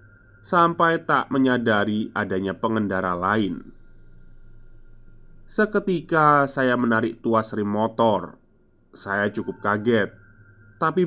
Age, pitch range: 20-39, 110-130 Hz